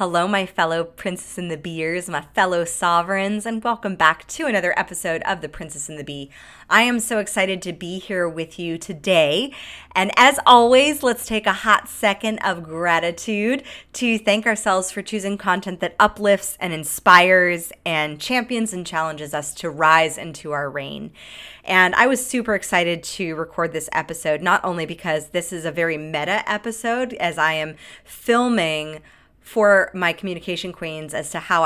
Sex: female